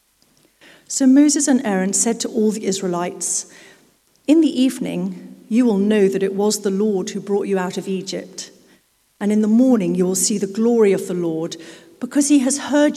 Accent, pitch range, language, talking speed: British, 185-235 Hz, English, 195 wpm